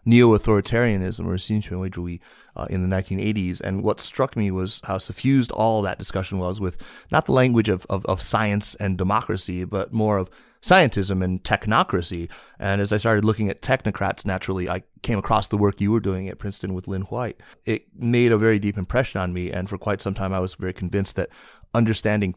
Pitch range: 95-110 Hz